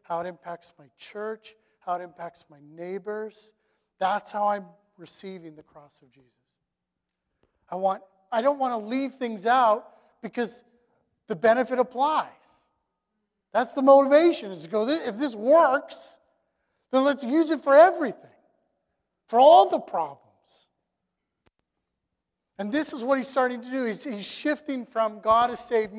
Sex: male